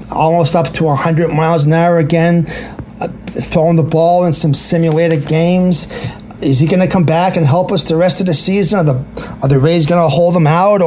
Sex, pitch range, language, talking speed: male, 155-185 Hz, English, 215 wpm